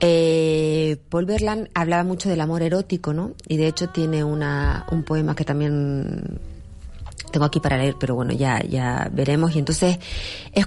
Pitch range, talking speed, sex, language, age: 130-180 Hz, 170 wpm, female, Spanish, 30-49